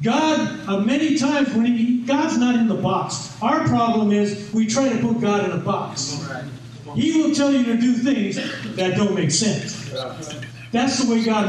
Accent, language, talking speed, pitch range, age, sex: American, English, 200 wpm, 160-250 Hz, 50-69, male